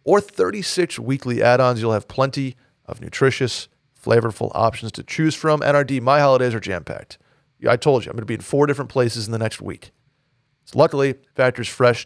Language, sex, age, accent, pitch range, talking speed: English, male, 40-59, American, 115-145 Hz, 190 wpm